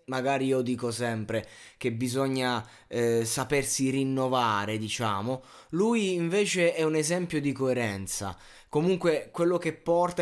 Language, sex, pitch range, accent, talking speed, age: Italian, male, 115-160 Hz, native, 125 wpm, 20-39